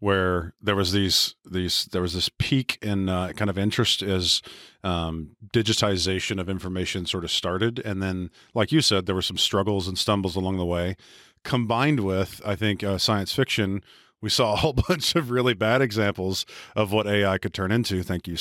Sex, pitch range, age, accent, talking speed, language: male, 90-115 Hz, 40-59, American, 195 wpm, English